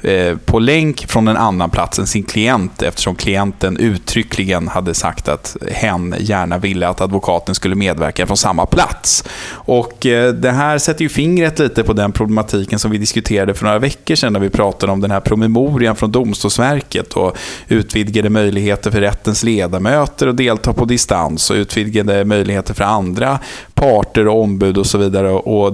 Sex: male